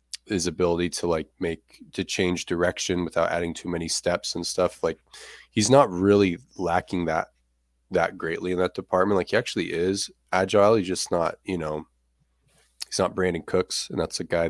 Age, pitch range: 20-39, 85-95 Hz